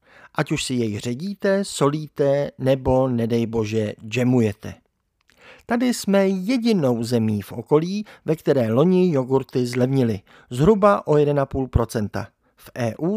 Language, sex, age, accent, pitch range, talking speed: Czech, male, 50-69, native, 115-175 Hz, 120 wpm